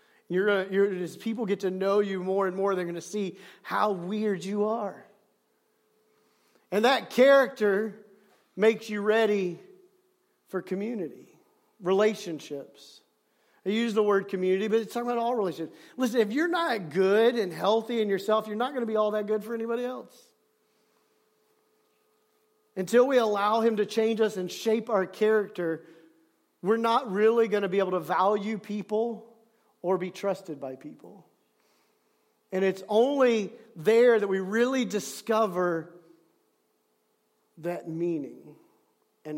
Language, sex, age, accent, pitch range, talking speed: English, male, 40-59, American, 185-225 Hz, 145 wpm